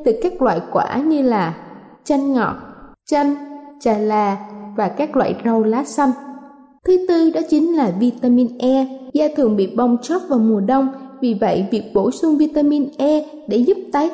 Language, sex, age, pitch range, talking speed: Vietnamese, female, 20-39, 235-295 Hz, 180 wpm